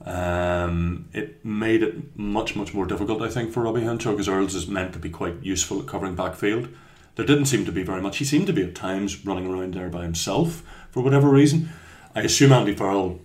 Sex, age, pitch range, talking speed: male, 30-49, 90-115 Hz, 220 wpm